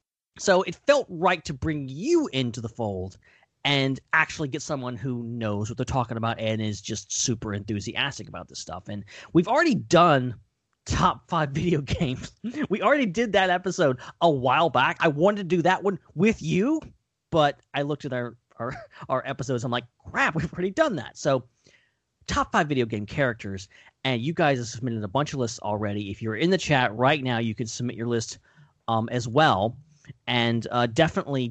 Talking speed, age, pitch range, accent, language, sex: 190 wpm, 30-49, 115-175 Hz, American, English, male